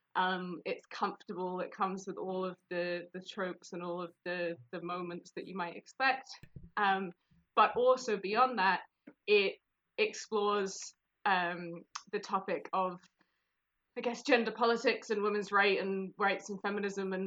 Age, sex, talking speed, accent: 20-39, female, 155 wpm, British